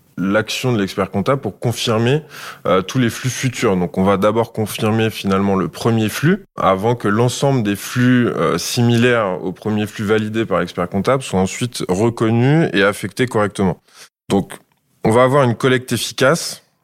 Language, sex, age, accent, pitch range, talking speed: French, male, 20-39, French, 100-130 Hz, 160 wpm